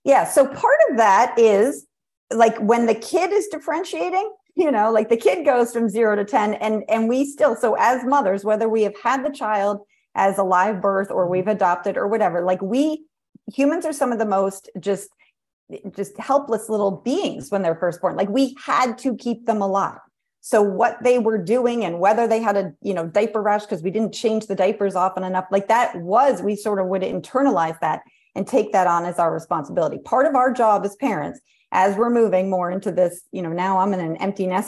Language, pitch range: English, 190-240 Hz